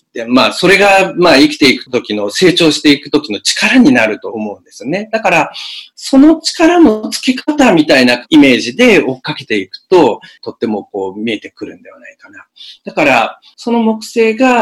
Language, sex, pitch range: Japanese, male, 145-240 Hz